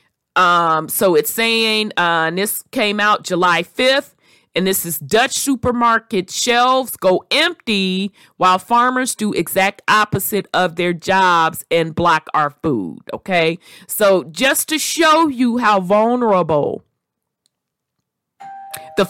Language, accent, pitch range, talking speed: English, American, 170-225 Hz, 125 wpm